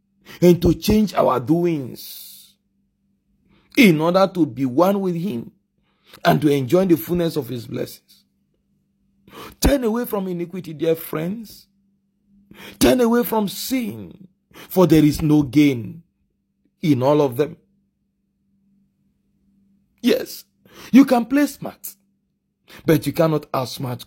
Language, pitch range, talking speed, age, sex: English, 170-205 Hz, 120 wpm, 40-59, male